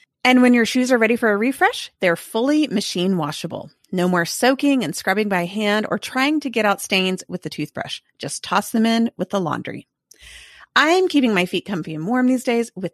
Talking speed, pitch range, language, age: 215 wpm, 170-255 Hz, English, 30-49